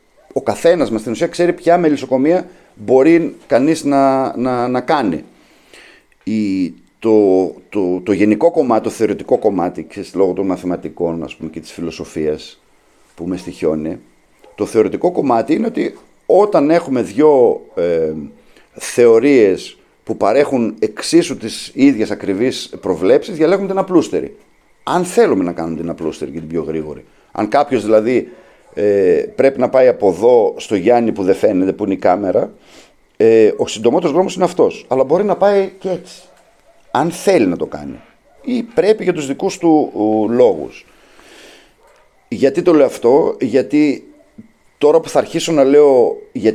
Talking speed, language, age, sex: 155 wpm, Greek, 50-69, male